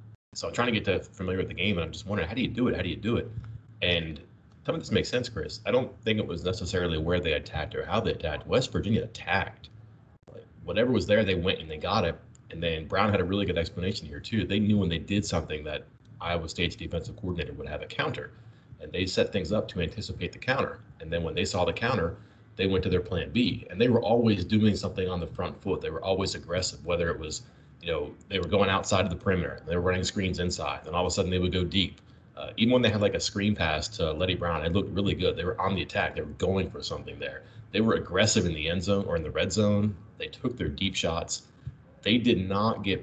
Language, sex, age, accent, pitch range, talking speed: English, male, 30-49, American, 85-110 Hz, 265 wpm